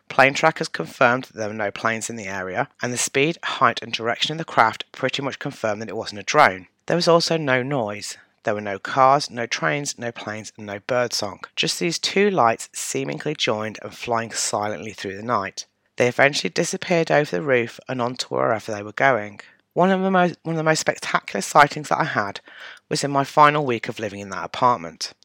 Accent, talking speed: British, 215 wpm